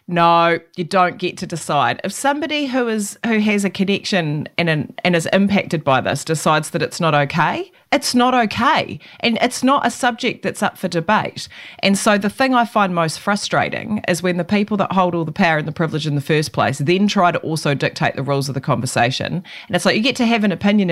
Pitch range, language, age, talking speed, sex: 165-220 Hz, English, 30-49, 230 wpm, female